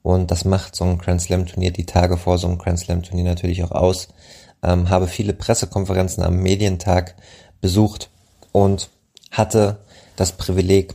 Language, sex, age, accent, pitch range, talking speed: German, male, 20-39, German, 90-95 Hz, 140 wpm